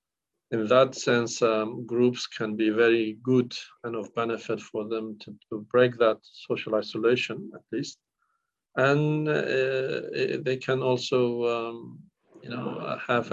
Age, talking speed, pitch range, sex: 50-69, 130 wpm, 110-130 Hz, male